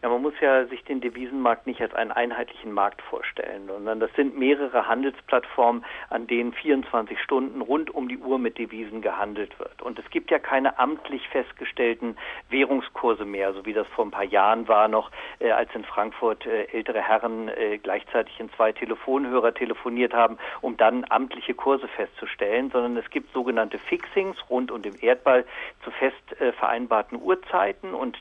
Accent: German